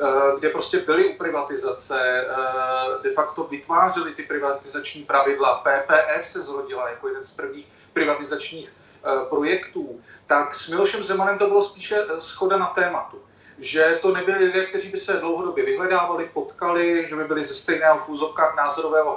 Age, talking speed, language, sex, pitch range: 40-59, 145 wpm, Czech, male, 150-205 Hz